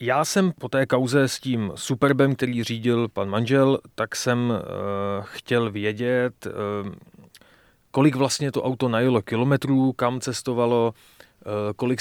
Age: 30-49